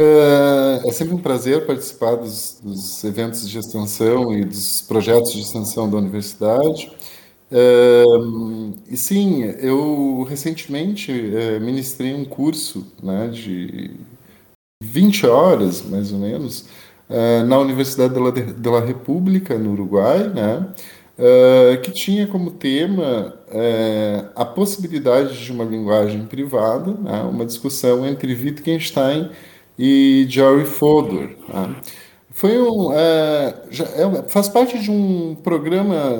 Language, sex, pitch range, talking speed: Portuguese, male, 110-150 Hz, 120 wpm